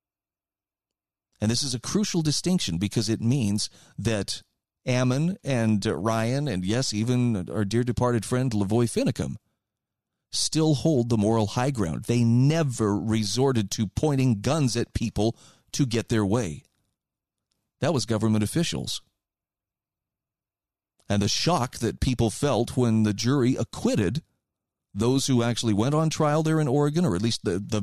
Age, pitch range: 40-59, 105-135 Hz